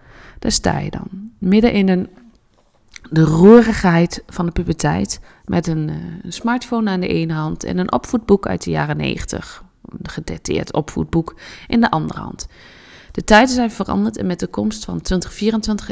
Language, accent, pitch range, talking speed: Dutch, Dutch, 165-225 Hz, 165 wpm